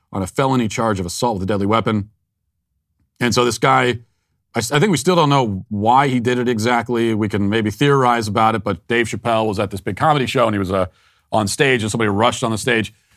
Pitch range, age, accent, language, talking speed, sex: 100-130 Hz, 40-59, American, English, 235 wpm, male